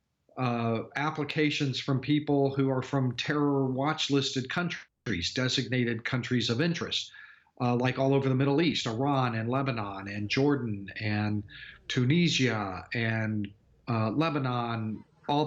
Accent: American